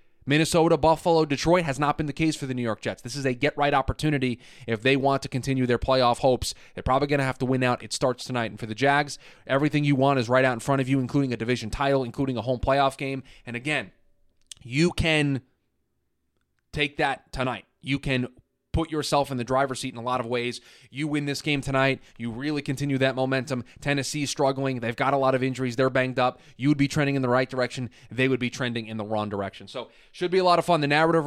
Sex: male